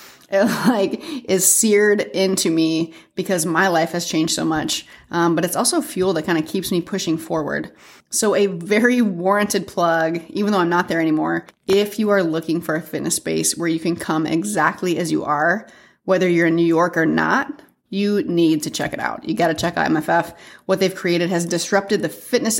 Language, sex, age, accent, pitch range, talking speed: English, female, 30-49, American, 165-195 Hz, 205 wpm